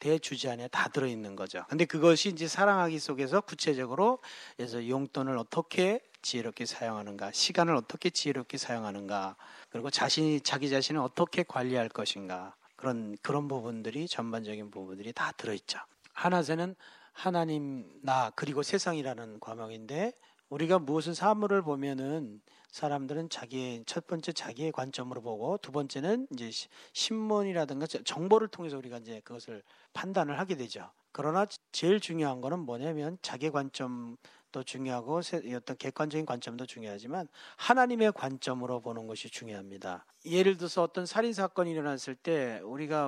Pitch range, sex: 125-170 Hz, male